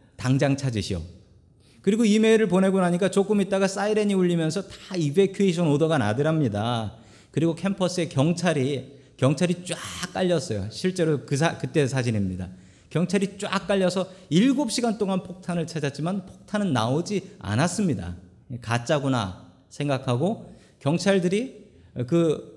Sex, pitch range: male, 130-195 Hz